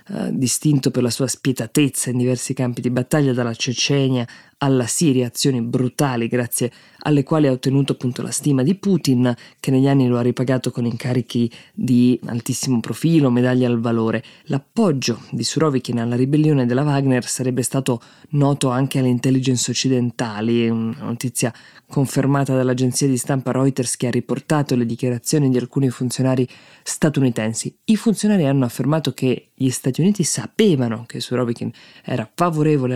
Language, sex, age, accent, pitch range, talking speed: Italian, female, 20-39, native, 120-140 Hz, 155 wpm